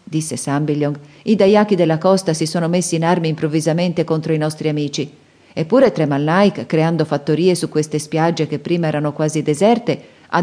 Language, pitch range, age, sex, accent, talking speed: Italian, 155-190 Hz, 40-59, female, native, 165 wpm